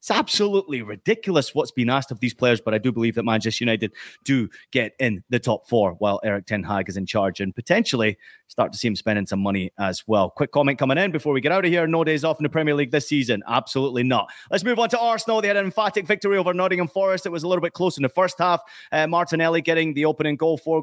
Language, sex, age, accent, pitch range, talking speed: English, male, 30-49, British, 125-160 Hz, 260 wpm